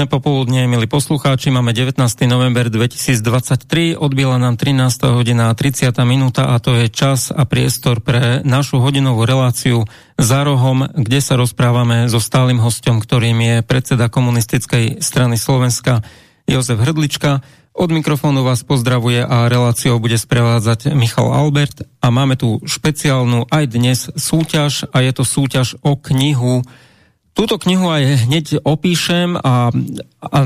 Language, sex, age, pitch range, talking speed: English, male, 40-59, 125-145 Hz, 135 wpm